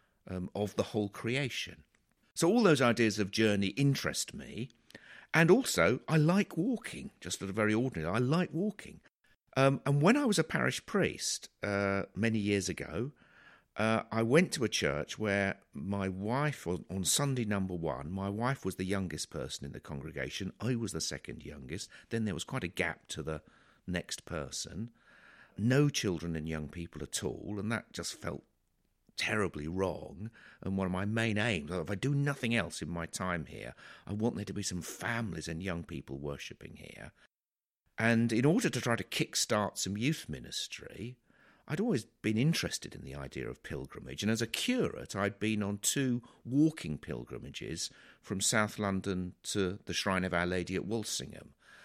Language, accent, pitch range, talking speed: English, British, 90-120 Hz, 180 wpm